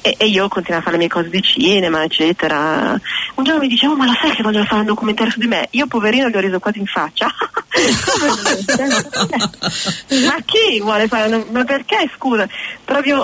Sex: female